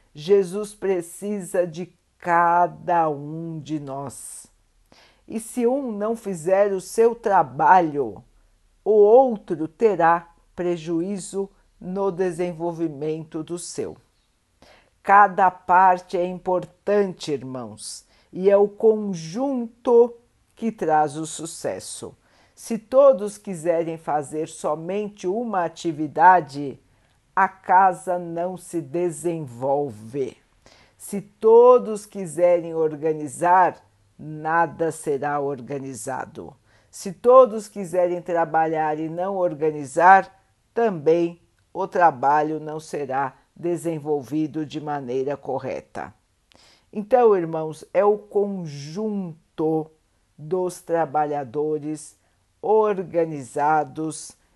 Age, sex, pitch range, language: 50-69, female, 155-195 Hz, Portuguese